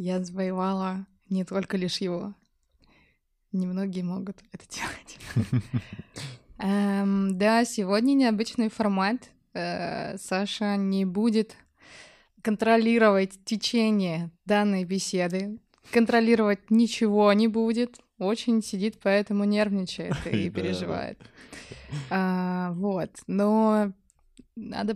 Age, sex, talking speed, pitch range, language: 20-39, female, 80 wpm, 185-225 Hz, Russian